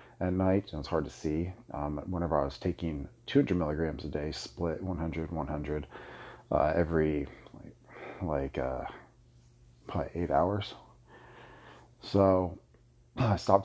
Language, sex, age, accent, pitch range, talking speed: English, male, 40-59, American, 80-100 Hz, 130 wpm